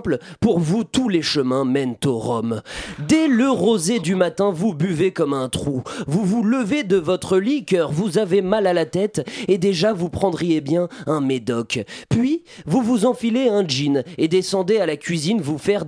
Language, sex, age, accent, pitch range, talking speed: French, male, 30-49, French, 155-230 Hz, 190 wpm